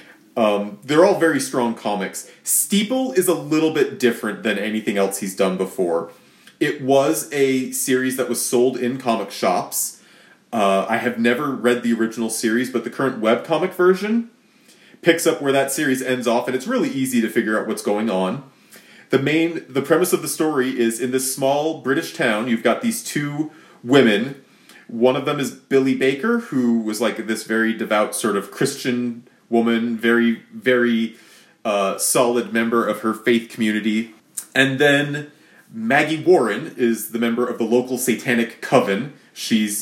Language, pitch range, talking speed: English, 115-150 Hz, 170 wpm